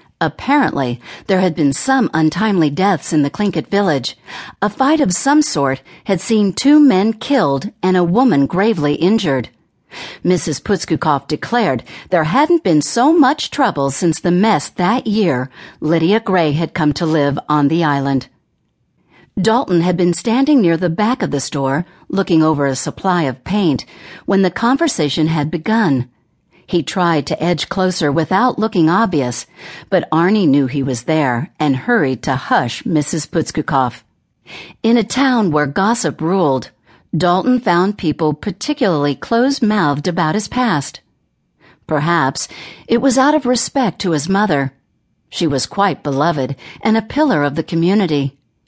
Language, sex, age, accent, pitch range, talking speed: English, female, 50-69, American, 145-215 Hz, 155 wpm